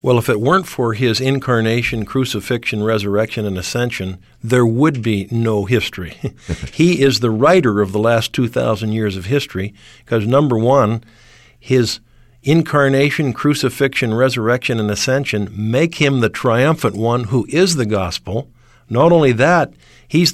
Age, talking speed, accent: 50-69, 145 wpm, American